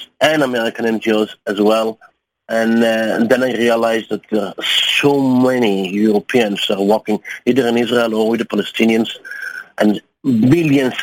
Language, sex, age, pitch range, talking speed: English, male, 50-69, 110-130 Hz, 145 wpm